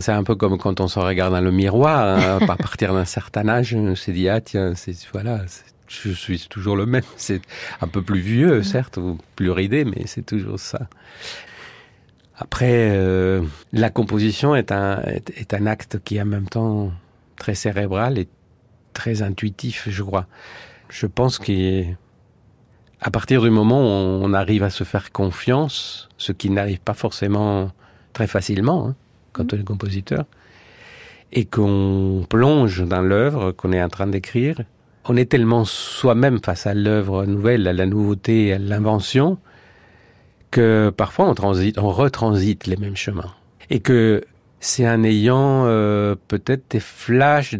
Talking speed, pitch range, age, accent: 170 wpm, 95-120 Hz, 50-69, French